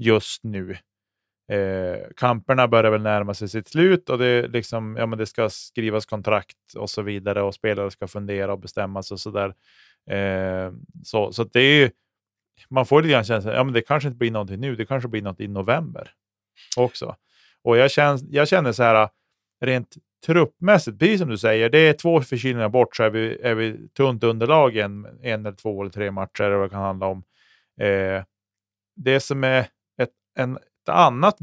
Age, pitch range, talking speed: 30-49, 100-140 Hz, 190 wpm